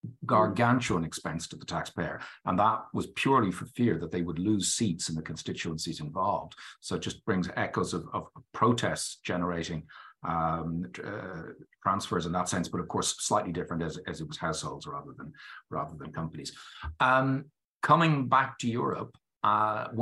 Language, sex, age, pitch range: English, male, 50-69, 85-110 Hz